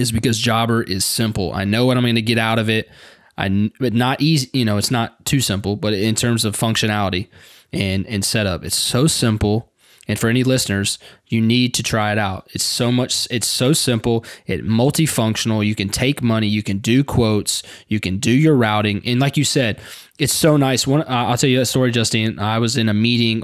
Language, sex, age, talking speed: English, male, 20-39, 220 wpm